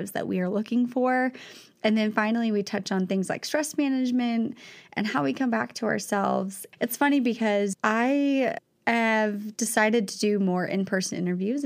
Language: English